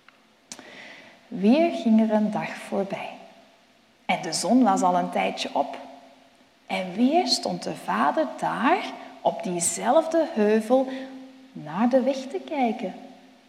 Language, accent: Dutch, Dutch